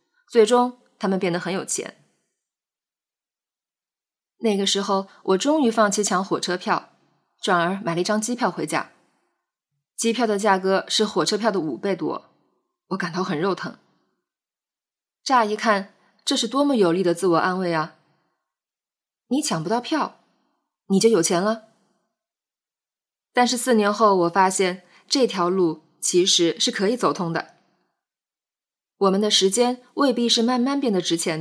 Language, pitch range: Chinese, 180-230 Hz